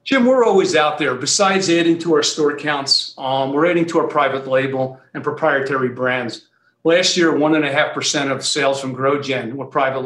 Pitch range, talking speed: 135-165 Hz, 205 wpm